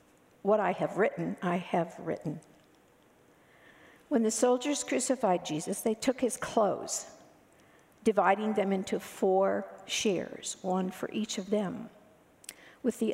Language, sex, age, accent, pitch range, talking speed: English, female, 60-79, American, 180-230 Hz, 130 wpm